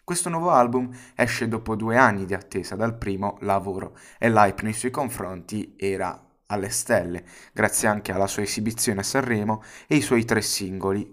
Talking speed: 175 wpm